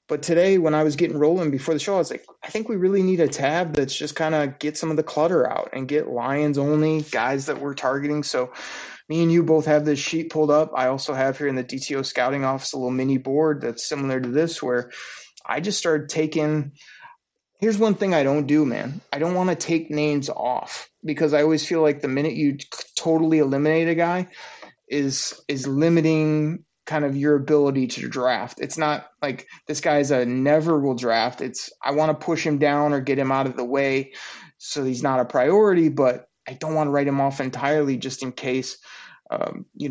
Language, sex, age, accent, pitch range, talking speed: English, male, 20-39, American, 135-160 Hz, 220 wpm